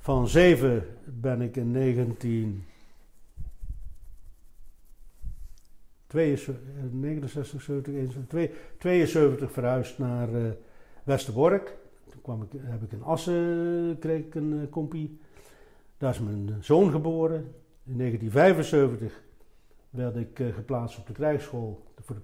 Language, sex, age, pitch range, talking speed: Dutch, male, 60-79, 120-155 Hz, 105 wpm